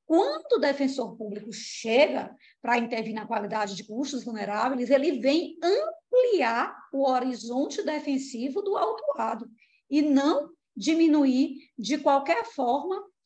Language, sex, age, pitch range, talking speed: Portuguese, female, 20-39, 230-300 Hz, 120 wpm